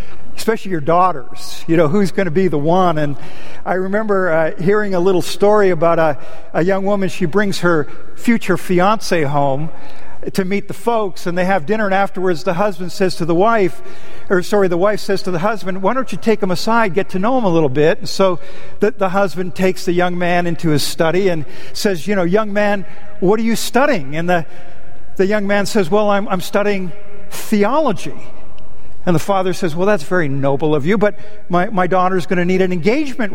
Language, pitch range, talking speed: English, 175-210 Hz, 215 wpm